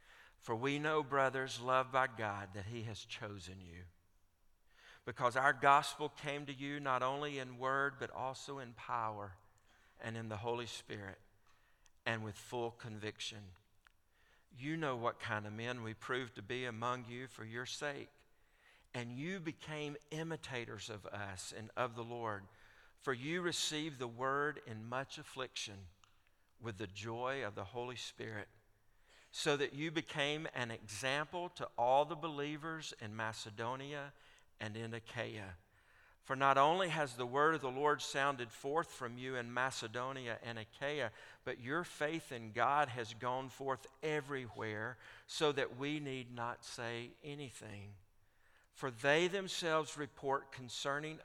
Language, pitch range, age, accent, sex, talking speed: English, 110-140 Hz, 50-69, American, male, 150 wpm